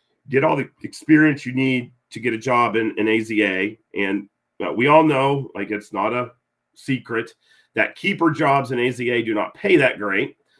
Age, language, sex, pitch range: 40-59, English, male, 115-150 Hz